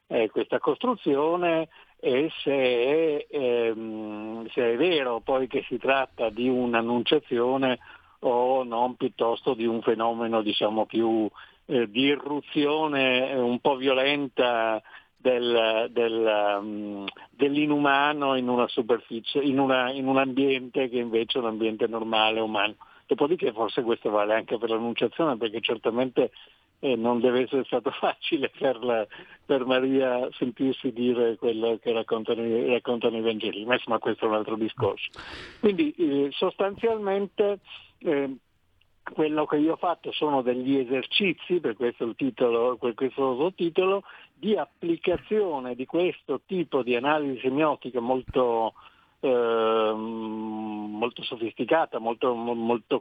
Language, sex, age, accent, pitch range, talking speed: Italian, male, 60-79, native, 115-150 Hz, 130 wpm